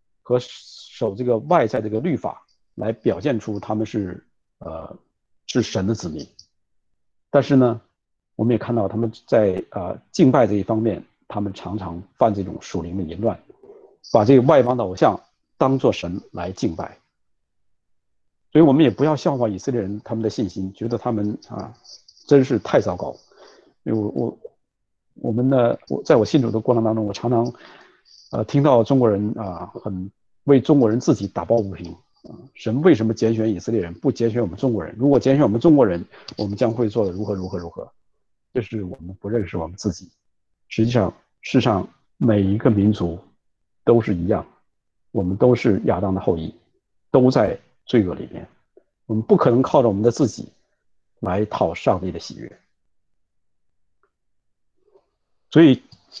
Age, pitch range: 50-69, 95-125 Hz